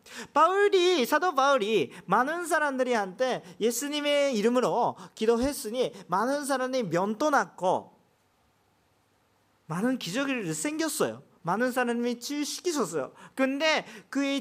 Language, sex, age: Korean, male, 40-59